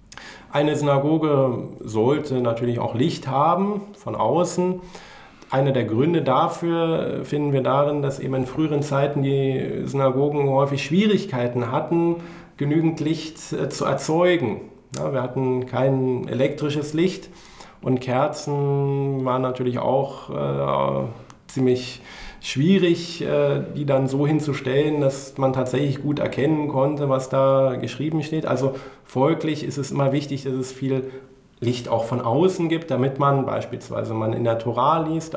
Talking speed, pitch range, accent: 140 wpm, 120-150 Hz, German